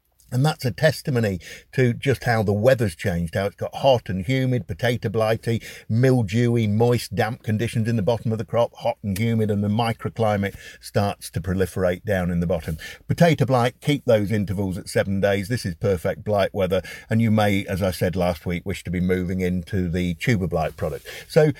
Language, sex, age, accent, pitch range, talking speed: English, male, 50-69, British, 100-130 Hz, 200 wpm